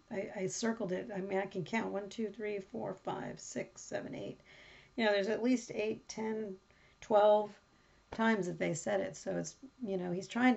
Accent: American